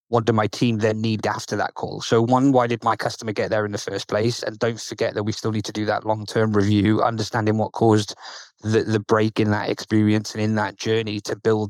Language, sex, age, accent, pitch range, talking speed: English, male, 20-39, British, 105-120 Hz, 245 wpm